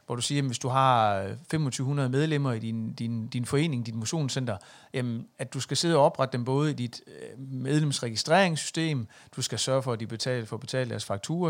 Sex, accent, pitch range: male, native, 120-150 Hz